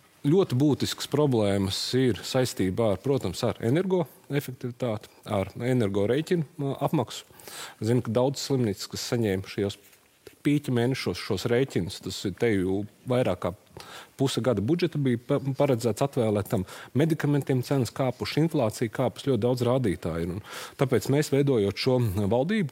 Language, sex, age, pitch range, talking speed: English, male, 30-49, 105-135 Hz, 125 wpm